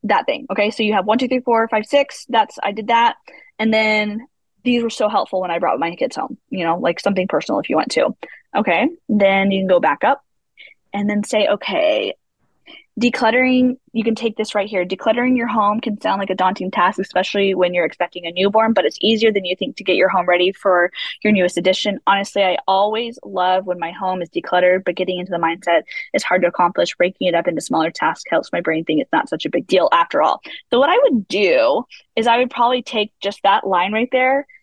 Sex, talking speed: female, 235 wpm